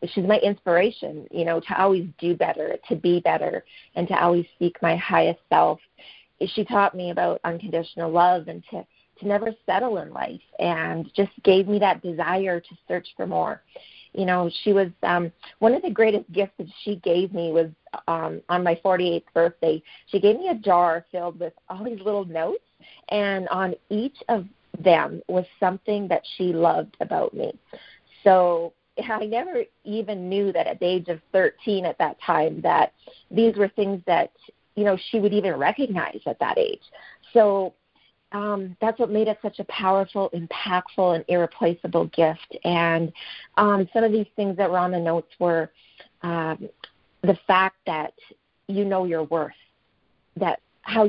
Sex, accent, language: female, American, English